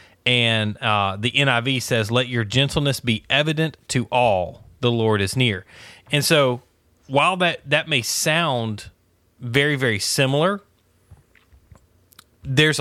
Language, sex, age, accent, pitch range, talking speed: English, male, 30-49, American, 105-135 Hz, 125 wpm